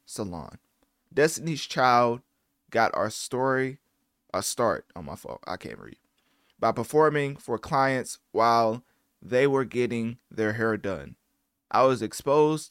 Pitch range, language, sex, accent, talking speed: 110-140 Hz, English, male, American, 130 wpm